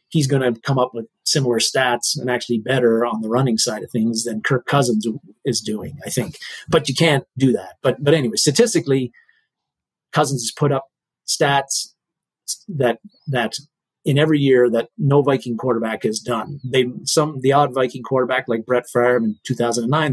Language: English